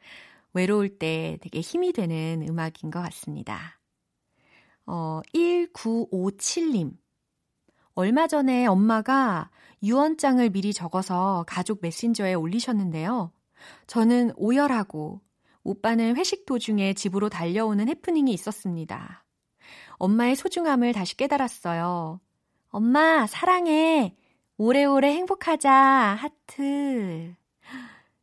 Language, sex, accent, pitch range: Korean, female, native, 175-250 Hz